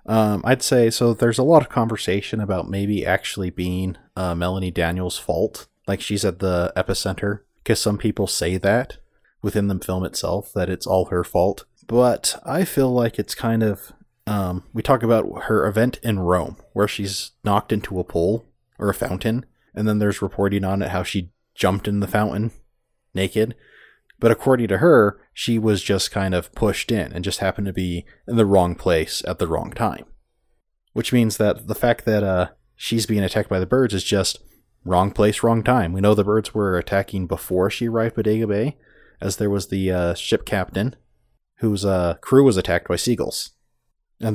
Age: 30-49